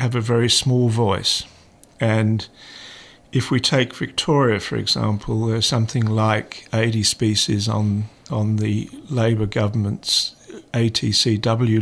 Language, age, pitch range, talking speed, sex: English, 50-69, 105-125 Hz, 115 wpm, male